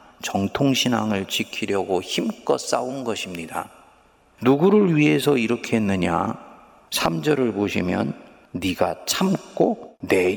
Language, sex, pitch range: Korean, male, 105-155 Hz